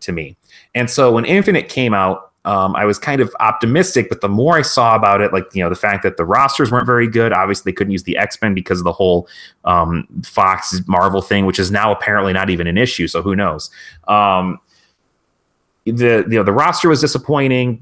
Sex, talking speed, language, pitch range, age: male, 220 wpm, English, 95-125 Hz, 30-49